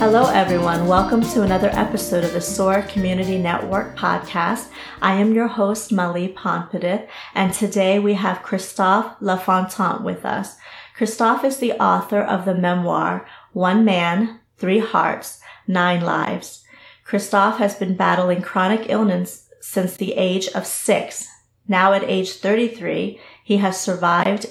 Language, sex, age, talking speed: English, female, 40-59, 140 wpm